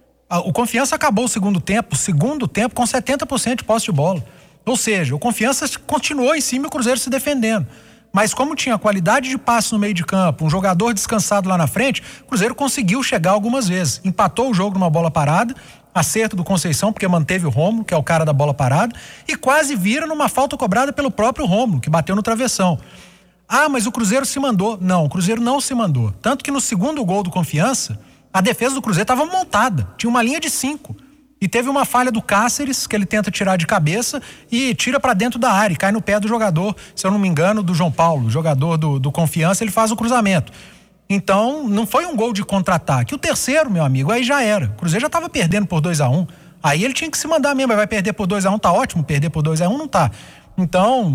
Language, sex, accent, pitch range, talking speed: Portuguese, male, Brazilian, 175-245 Hz, 230 wpm